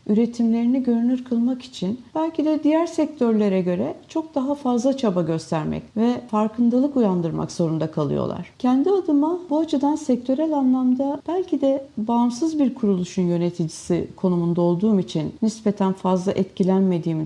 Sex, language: female, Turkish